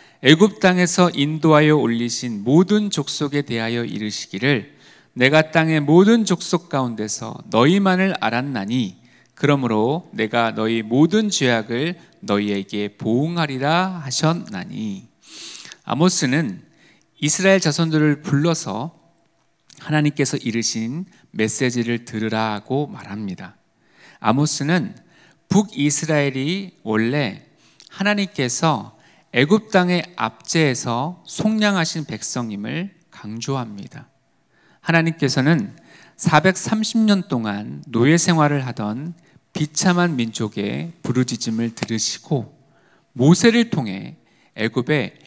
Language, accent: Korean, native